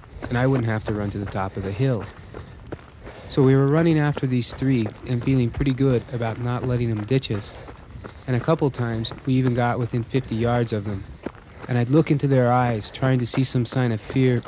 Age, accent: 30-49, American